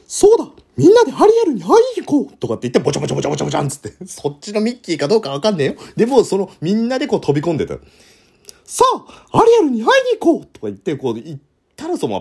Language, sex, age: Japanese, male, 30-49